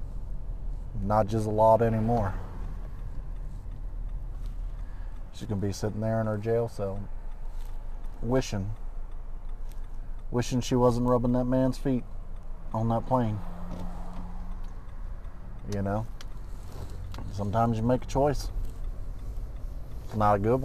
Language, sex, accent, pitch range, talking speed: English, male, American, 95-115 Hz, 105 wpm